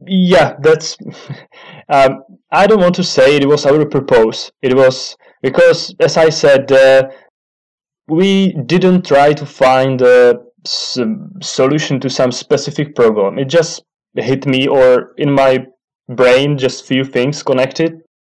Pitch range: 130-160 Hz